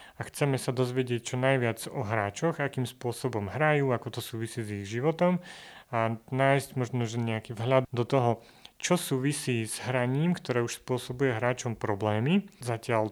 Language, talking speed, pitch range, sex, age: Slovak, 160 wpm, 115-135 Hz, male, 30-49